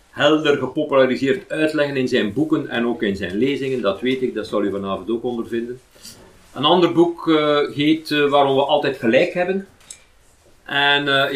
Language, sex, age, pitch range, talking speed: Dutch, male, 50-69, 120-145 Hz, 175 wpm